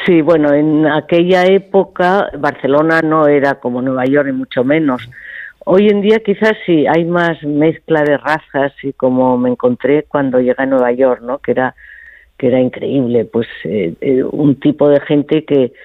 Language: Spanish